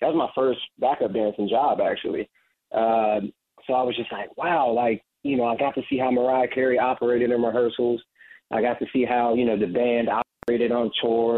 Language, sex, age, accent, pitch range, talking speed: English, male, 30-49, American, 110-120 Hz, 210 wpm